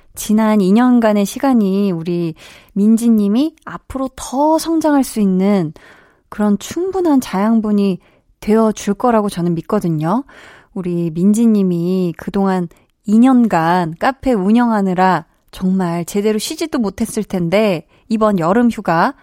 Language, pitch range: Korean, 185-245 Hz